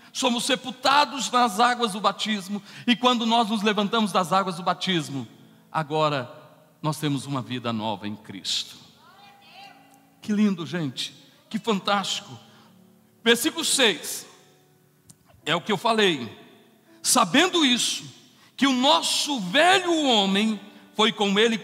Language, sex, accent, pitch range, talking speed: Portuguese, male, Brazilian, 180-265 Hz, 125 wpm